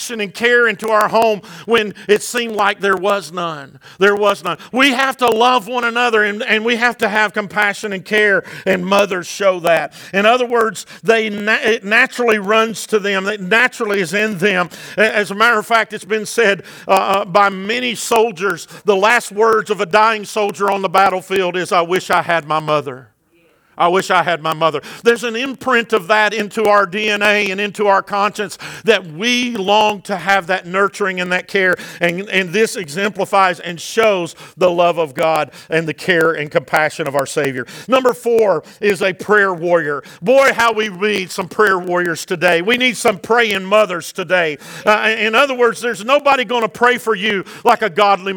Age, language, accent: 50-69, English, American